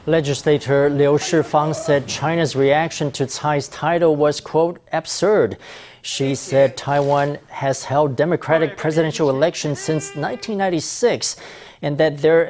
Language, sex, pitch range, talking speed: English, male, 135-160 Hz, 120 wpm